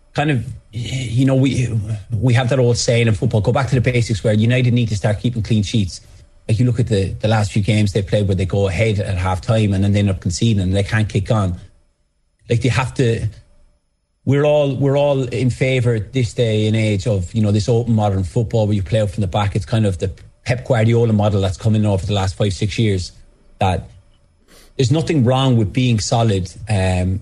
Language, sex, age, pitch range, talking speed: English, male, 30-49, 100-120 Hz, 230 wpm